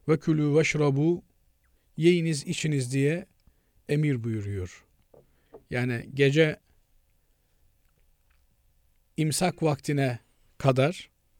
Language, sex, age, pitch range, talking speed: Turkish, male, 50-69, 110-170 Hz, 55 wpm